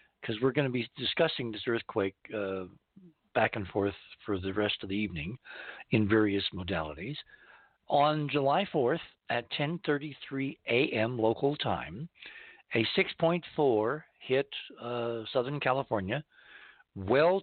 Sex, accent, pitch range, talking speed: male, American, 110-145 Hz, 125 wpm